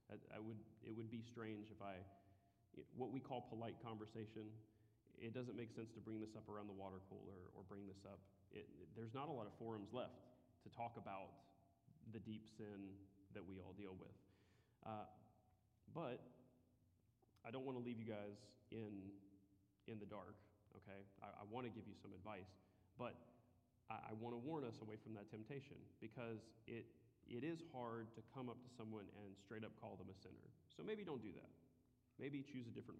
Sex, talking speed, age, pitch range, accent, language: male, 195 wpm, 30-49, 100-120 Hz, American, English